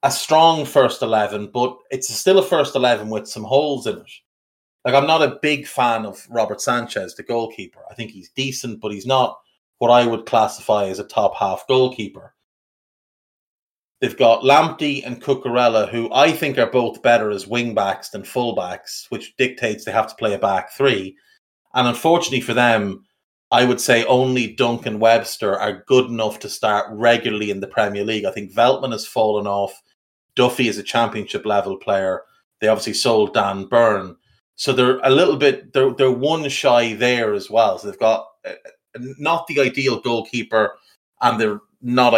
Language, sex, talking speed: English, male, 180 wpm